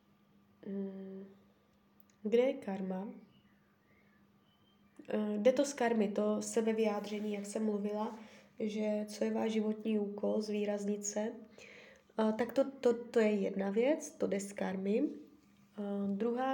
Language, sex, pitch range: Czech, female, 205-240 Hz